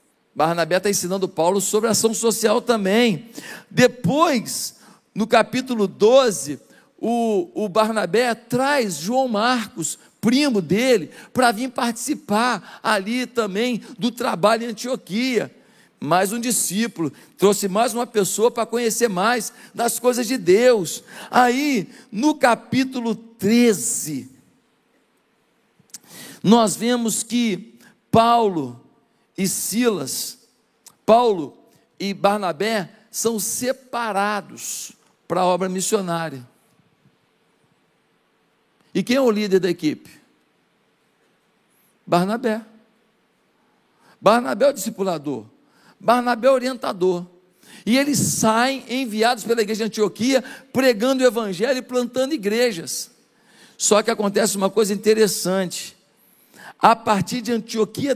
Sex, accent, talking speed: male, Brazilian, 105 wpm